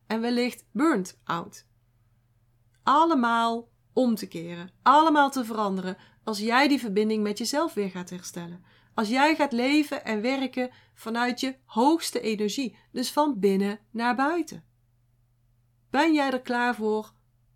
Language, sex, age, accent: Dutch, female, 30-49, Dutch